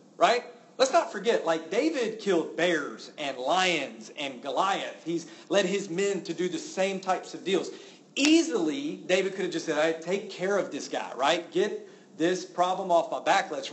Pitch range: 160-210 Hz